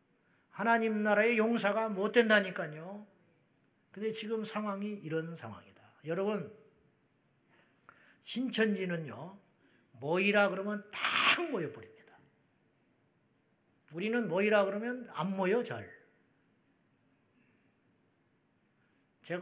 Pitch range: 195-270 Hz